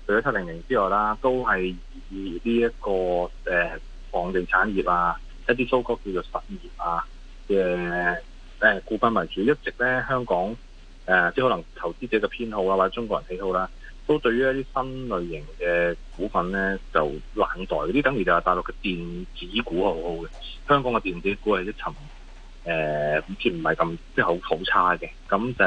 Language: Chinese